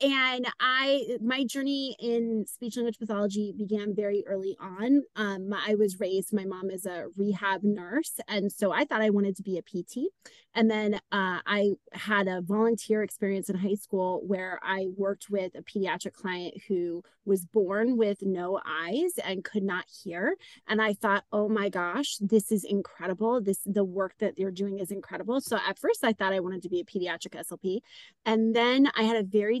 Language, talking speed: English, 195 wpm